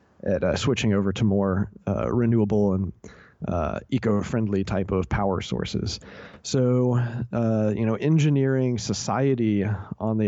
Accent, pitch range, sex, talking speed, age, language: American, 100-120 Hz, male, 135 wpm, 30-49, English